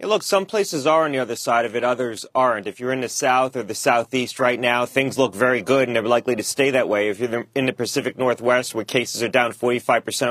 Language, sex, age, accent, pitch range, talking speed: English, male, 30-49, American, 120-140 Hz, 270 wpm